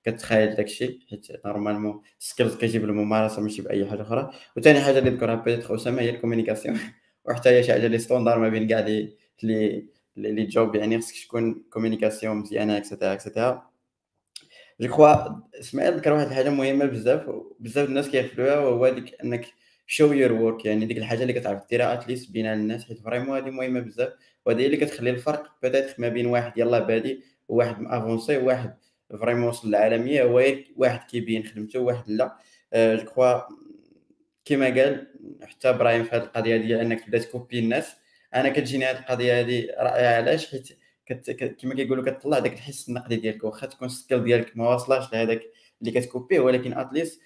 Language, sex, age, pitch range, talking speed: Arabic, male, 20-39, 115-130 Hz, 165 wpm